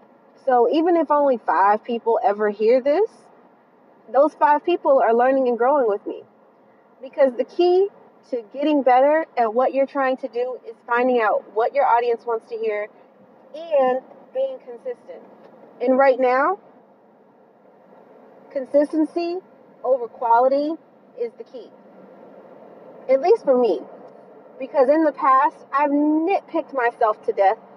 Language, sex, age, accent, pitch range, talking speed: English, female, 30-49, American, 235-345 Hz, 140 wpm